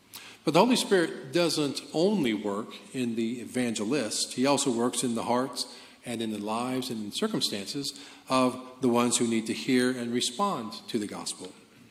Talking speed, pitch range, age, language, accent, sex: 175 wpm, 110-140 Hz, 50-69, English, American, male